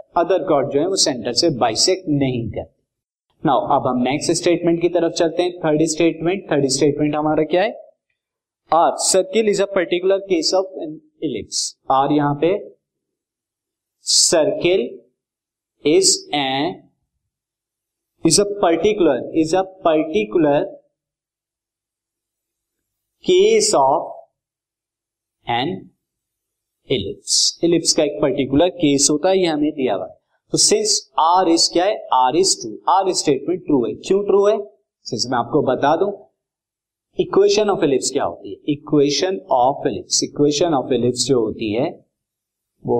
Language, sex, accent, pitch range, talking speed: Hindi, male, native, 135-215 Hz, 135 wpm